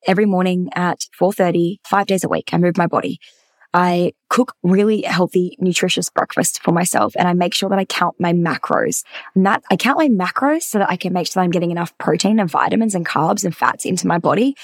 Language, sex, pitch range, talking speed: English, female, 180-225 Hz, 215 wpm